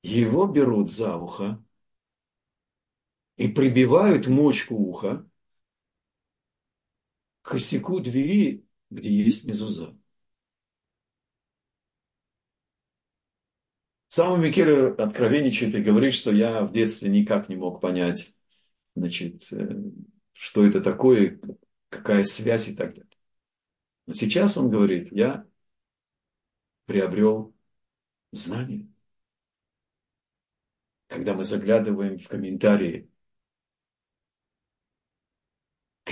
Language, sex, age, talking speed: Russian, male, 50-69, 80 wpm